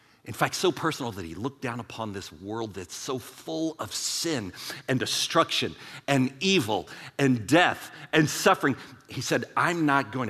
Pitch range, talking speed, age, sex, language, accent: 100-140 Hz, 170 wpm, 50-69, male, English, American